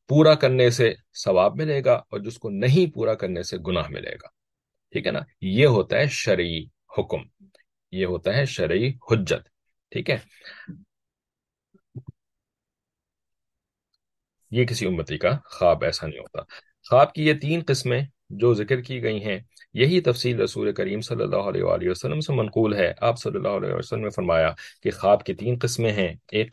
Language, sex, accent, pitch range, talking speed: English, male, Indian, 100-135 Hz, 165 wpm